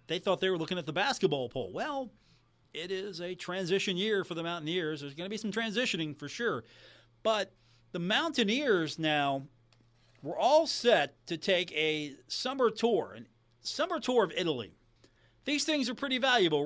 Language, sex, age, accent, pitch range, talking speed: English, male, 40-59, American, 130-210 Hz, 175 wpm